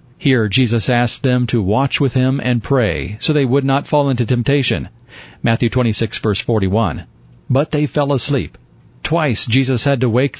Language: English